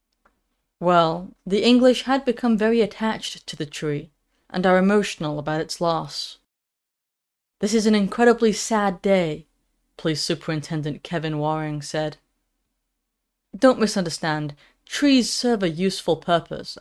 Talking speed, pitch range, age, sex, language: 120 wpm, 160-215 Hz, 20-39, female, English